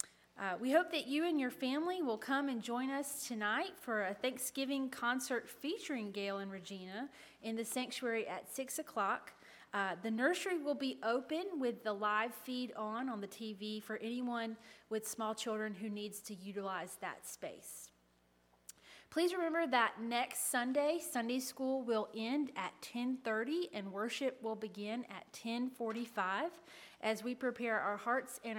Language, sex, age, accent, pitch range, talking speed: English, female, 30-49, American, 210-270 Hz, 155 wpm